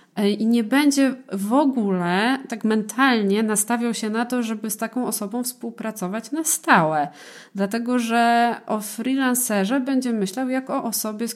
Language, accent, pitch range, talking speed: Polish, native, 185-230 Hz, 150 wpm